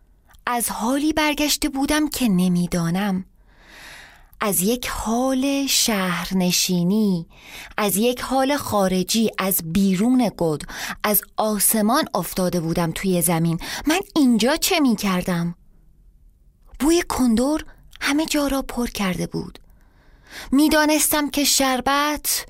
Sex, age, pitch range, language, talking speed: female, 30-49, 200-280 Hz, Persian, 100 wpm